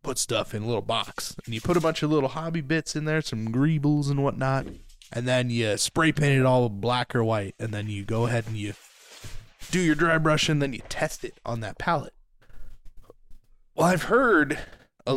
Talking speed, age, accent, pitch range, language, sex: 215 wpm, 20-39, American, 110-145 Hz, English, male